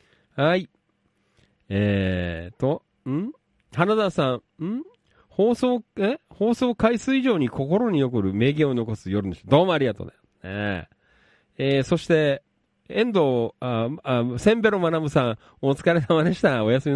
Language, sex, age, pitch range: Japanese, male, 40-59, 95-160 Hz